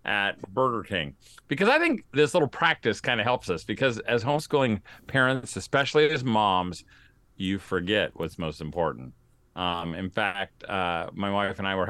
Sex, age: male, 50-69